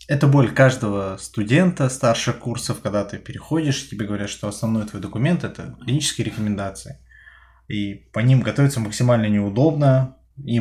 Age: 20-39